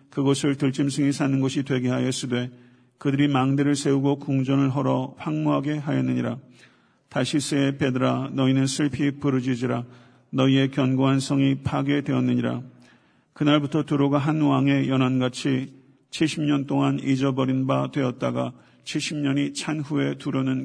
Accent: native